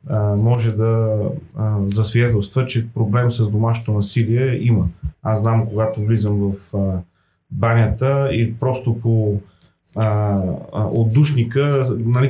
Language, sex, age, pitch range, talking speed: Bulgarian, male, 30-49, 105-125 Hz, 105 wpm